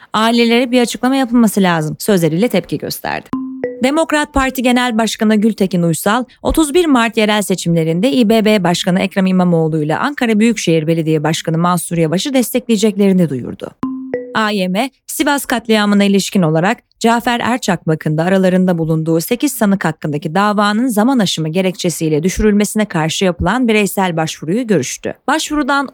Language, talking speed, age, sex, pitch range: Turkish, 125 wpm, 30-49, female, 180-245 Hz